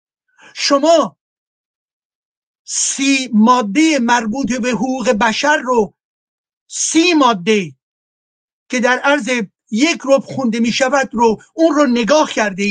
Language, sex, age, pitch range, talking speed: Persian, male, 50-69, 225-275 Hz, 110 wpm